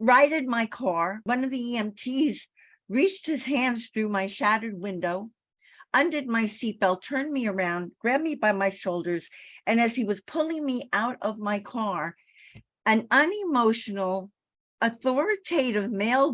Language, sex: English, female